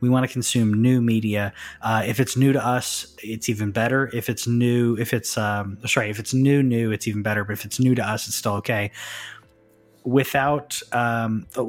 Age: 20-39